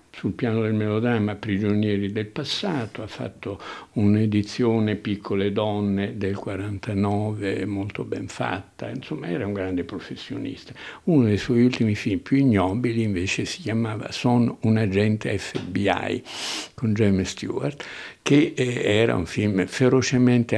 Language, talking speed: Italian, 130 wpm